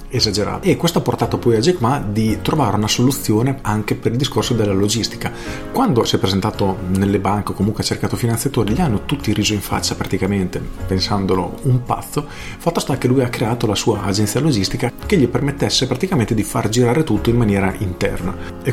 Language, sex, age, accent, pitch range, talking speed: Italian, male, 40-59, native, 100-125 Hz, 200 wpm